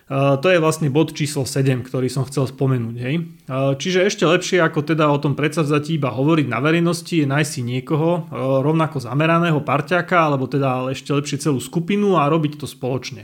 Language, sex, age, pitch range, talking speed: Slovak, male, 30-49, 135-160 Hz, 180 wpm